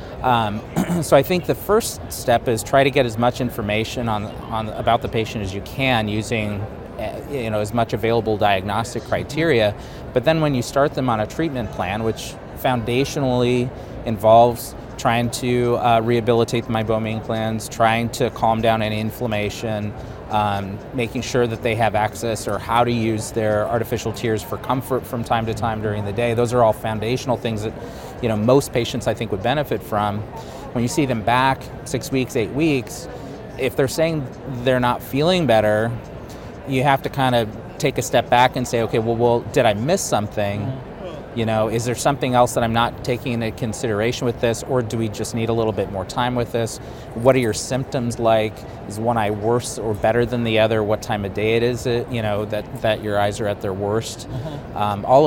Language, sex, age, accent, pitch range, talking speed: English, male, 30-49, American, 110-125 Hz, 200 wpm